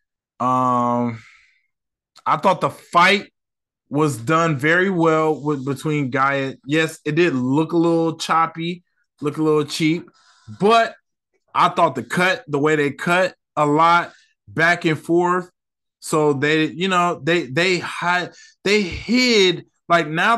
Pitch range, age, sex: 130-170 Hz, 20-39, male